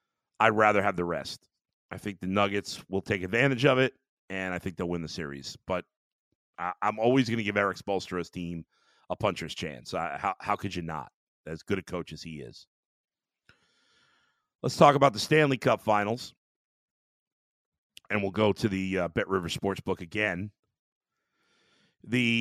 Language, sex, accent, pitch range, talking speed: English, male, American, 90-115 Hz, 175 wpm